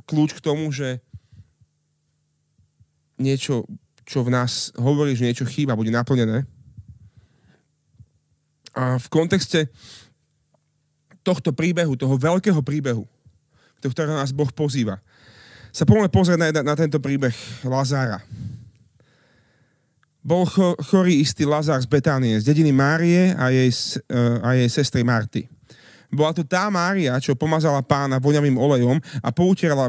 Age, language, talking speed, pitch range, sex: 30-49, Slovak, 120 wpm, 120-155 Hz, male